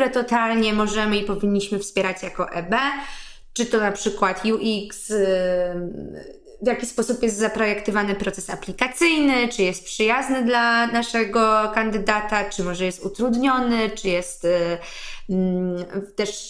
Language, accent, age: Polish, native, 20-39